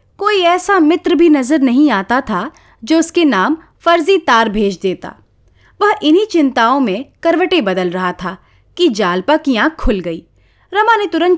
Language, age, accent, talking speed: Hindi, 30-49, native, 170 wpm